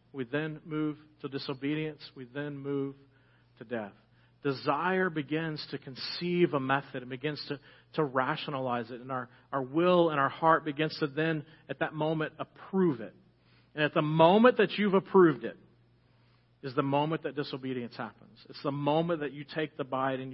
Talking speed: 175 wpm